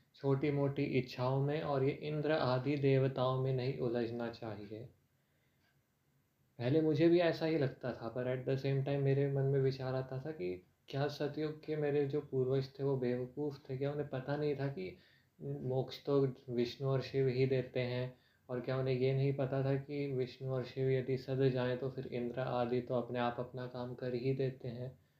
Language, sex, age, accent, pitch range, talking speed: Hindi, male, 20-39, native, 125-145 Hz, 200 wpm